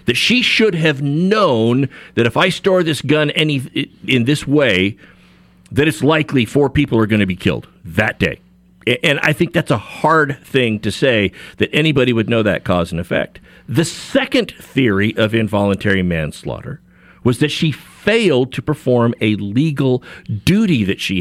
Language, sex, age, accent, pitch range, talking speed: English, male, 50-69, American, 105-150 Hz, 175 wpm